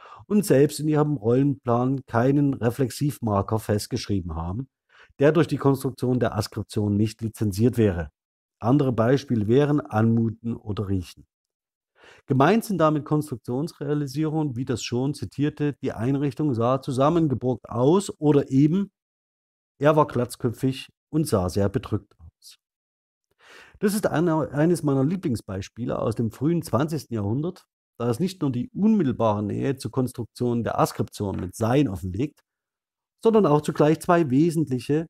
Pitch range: 115-150 Hz